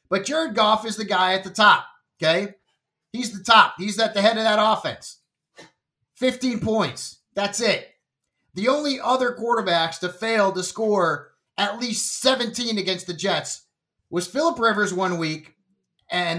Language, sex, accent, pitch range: English, male, American, 165-250 Hz